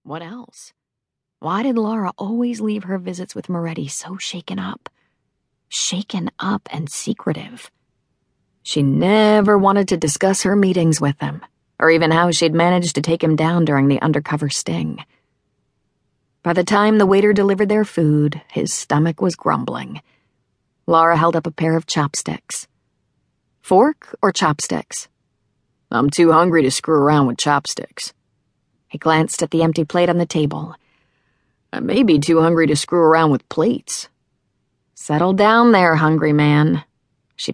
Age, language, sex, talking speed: 40-59, English, female, 150 wpm